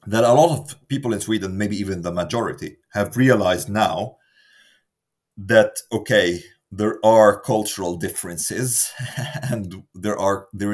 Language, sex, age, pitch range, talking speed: English, male, 30-49, 100-130 Hz, 135 wpm